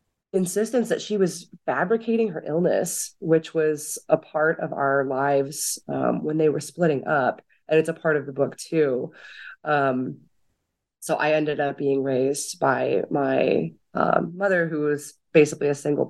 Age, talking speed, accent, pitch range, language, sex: 20-39, 165 wpm, American, 140-165 Hz, English, female